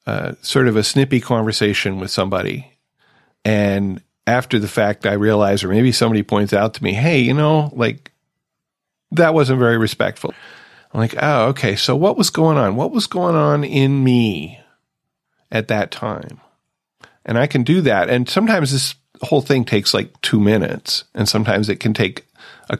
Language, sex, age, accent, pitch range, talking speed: English, male, 40-59, American, 105-130 Hz, 175 wpm